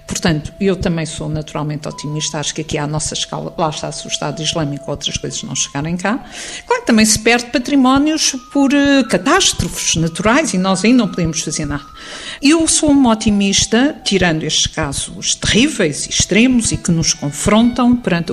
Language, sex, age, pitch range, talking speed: Portuguese, female, 50-69, 175-260 Hz, 175 wpm